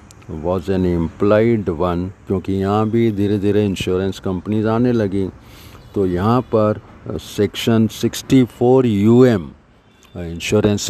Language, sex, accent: Hindi, male, native